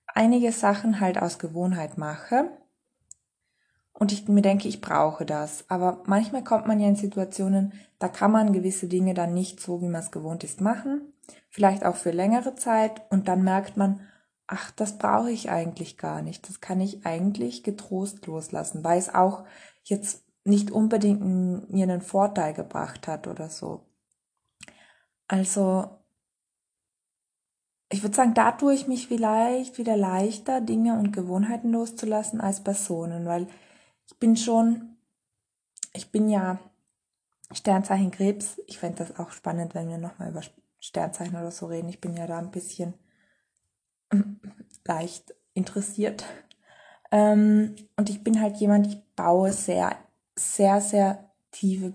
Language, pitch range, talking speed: German, 180-215 Hz, 145 wpm